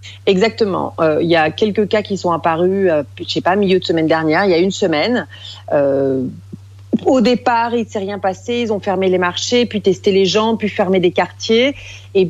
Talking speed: 220 wpm